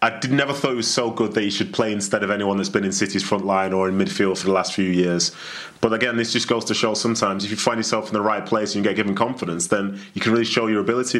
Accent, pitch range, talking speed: British, 100-115 Hz, 300 wpm